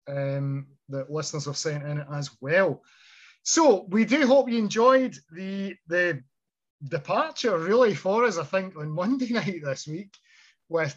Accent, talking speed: British, 155 wpm